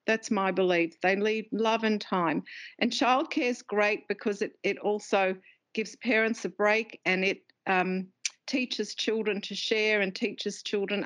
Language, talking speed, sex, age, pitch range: English, 165 wpm, female, 50-69, 190-230 Hz